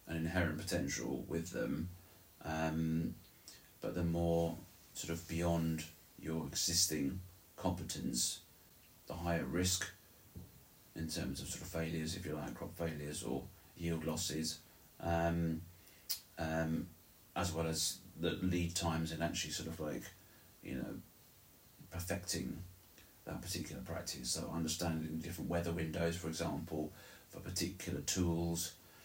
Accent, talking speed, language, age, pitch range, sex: British, 125 wpm, English, 30-49, 80-90 Hz, male